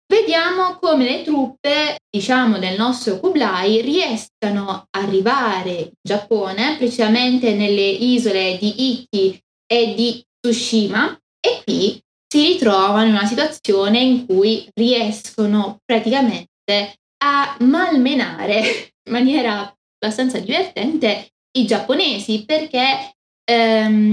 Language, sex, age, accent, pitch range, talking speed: Italian, female, 20-39, native, 205-250 Hz, 105 wpm